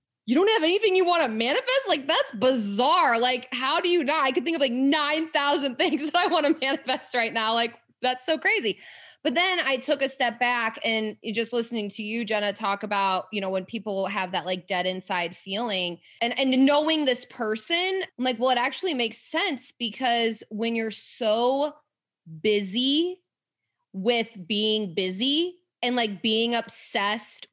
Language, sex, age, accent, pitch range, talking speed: English, female, 20-39, American, 215-275 Hz, 180 wpm